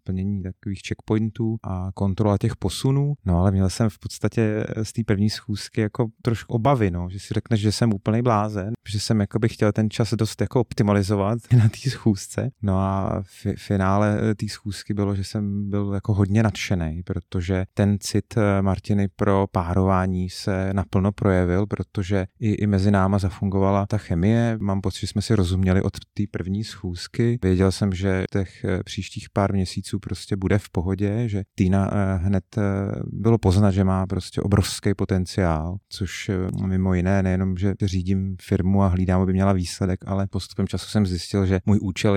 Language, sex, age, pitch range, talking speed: Czech, male, 30-49, 95-105 Hz, 170 wpm